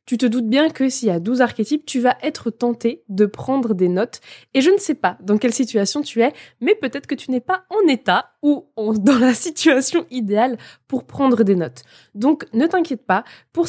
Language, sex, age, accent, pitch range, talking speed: French, female, 20-39, French, 215-275 Hz, 220 wpm